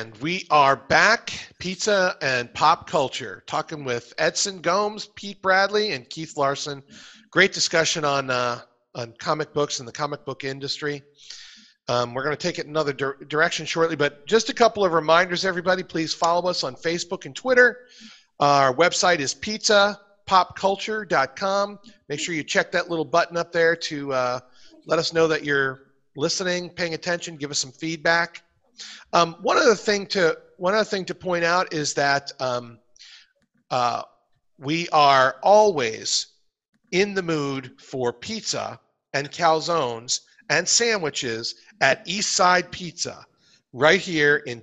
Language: English